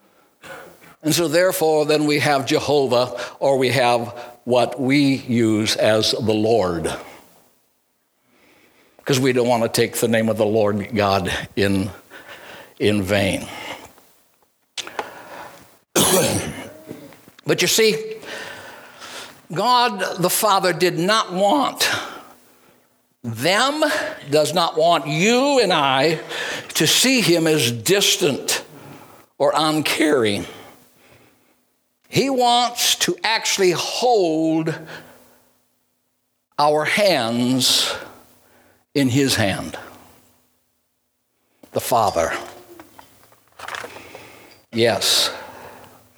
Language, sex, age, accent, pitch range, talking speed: English, male, 60-79, American, 120-200 Hz, 85 wpm